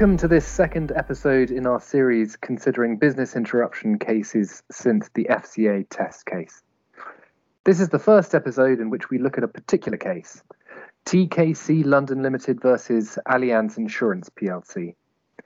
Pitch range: 115-165 Hz